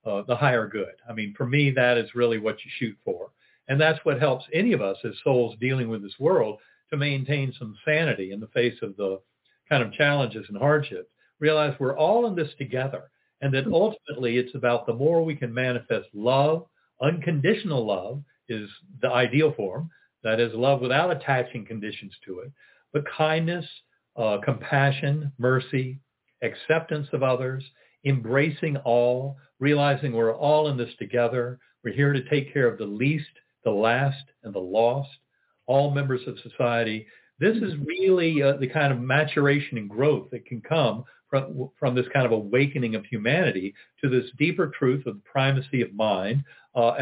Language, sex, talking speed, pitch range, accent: English, male, 175 wpm, 120-150 Hz, American